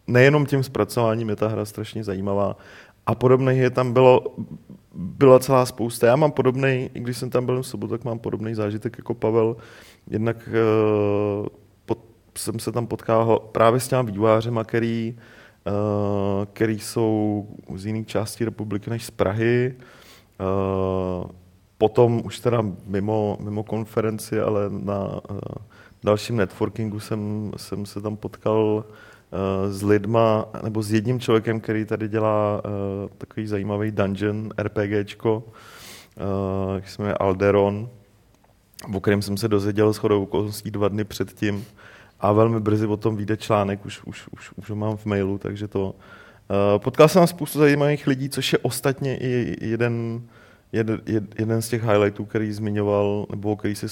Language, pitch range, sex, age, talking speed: Czech, 100-115 Hz, male, 30-49, 155 wpm